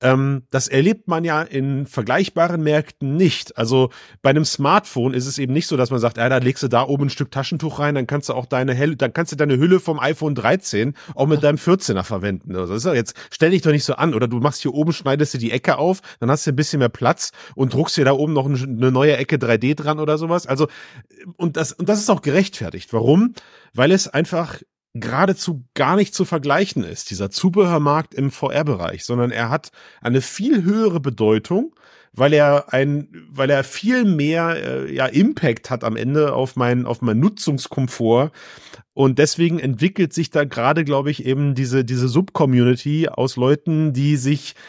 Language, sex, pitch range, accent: German, male, 130-160 Hz, German